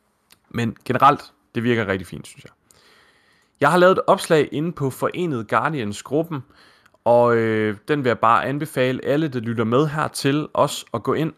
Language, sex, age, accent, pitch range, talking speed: Danish, male, 20-39, native, 105-130 Hz, 180 wpm